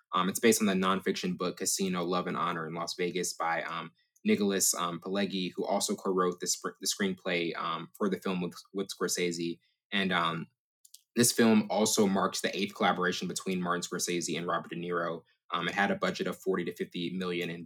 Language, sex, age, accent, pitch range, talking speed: English, male, 20-39, American, 90-100 Hz, 200 wpm